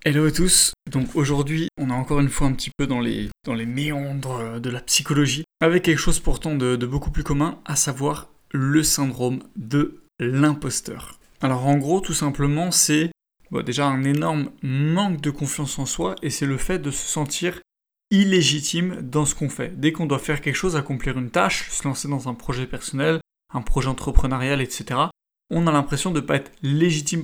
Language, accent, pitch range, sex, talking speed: French, French, 135-160 Hz, male, 195 wpm